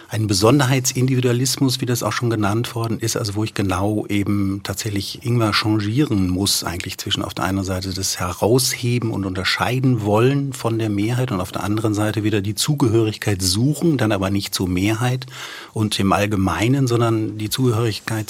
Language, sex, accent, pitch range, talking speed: German, male, German, 100-120 Hz, 170 wpm